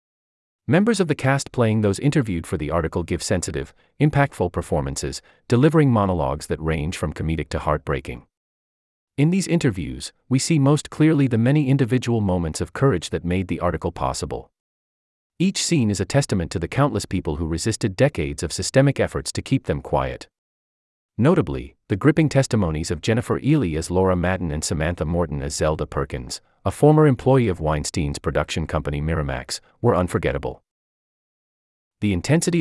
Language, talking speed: English, 160 wpm